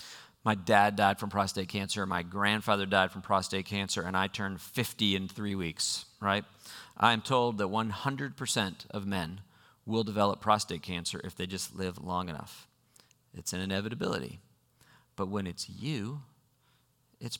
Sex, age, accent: male, 40-59, American